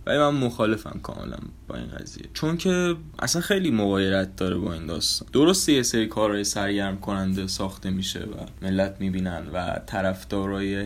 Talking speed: 155 wpm